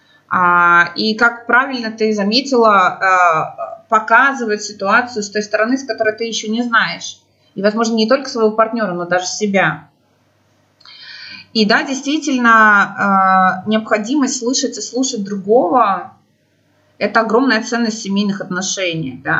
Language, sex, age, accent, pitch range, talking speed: Russian, female, 20-39, native, 185-230 Hz, 120 wpm